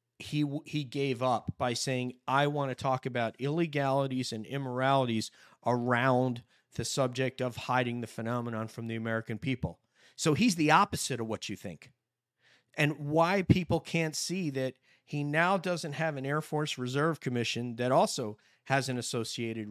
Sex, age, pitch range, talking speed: male, 40-59, 125-150 Hz, 160 wpm